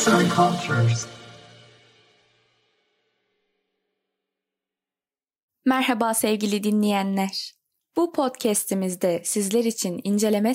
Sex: female